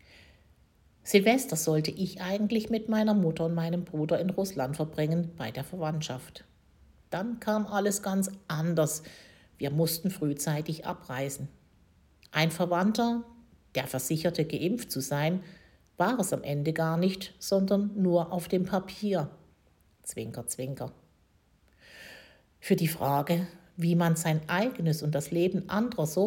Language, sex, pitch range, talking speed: German, female, 150-190 Hz, 130 wpm